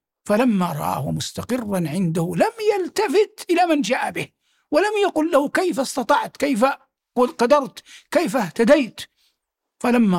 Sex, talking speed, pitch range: male, 120 wpm, 210-340 Hz